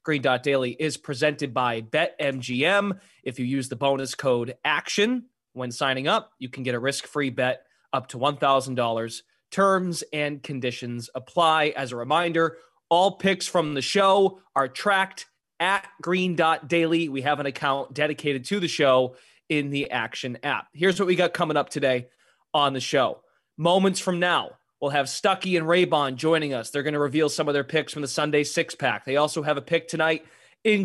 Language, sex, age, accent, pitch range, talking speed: English, male, 20-39, American, 135-175 Hz, 180 wpm